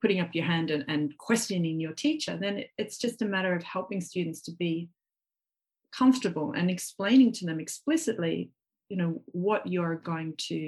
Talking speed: 175 wpm